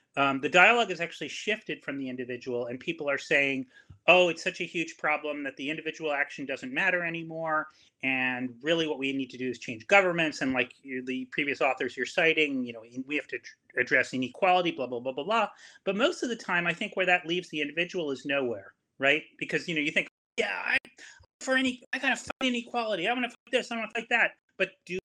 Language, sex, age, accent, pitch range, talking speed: English, male, 30-49, American, 150-200 Hz, 230 wpm